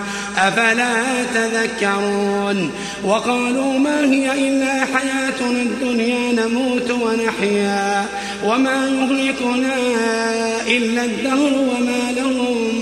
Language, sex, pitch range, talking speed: Arabic, male, 220-260 Hz, 75 wpm